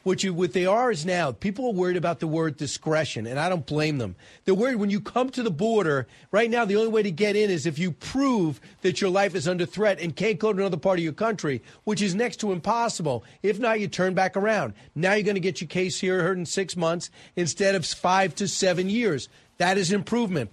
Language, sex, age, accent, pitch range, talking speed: English, male, 40-59, American, 165-210 Hz, 250 wpm